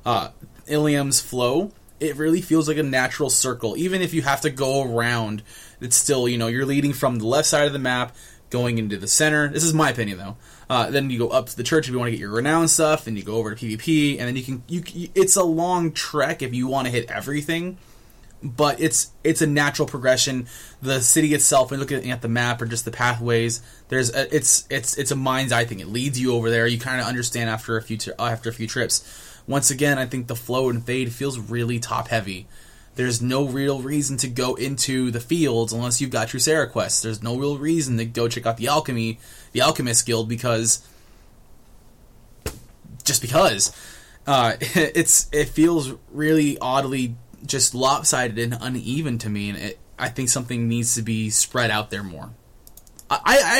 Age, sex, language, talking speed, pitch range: 20-39, male, English, 205 wpm, 115-145 Hz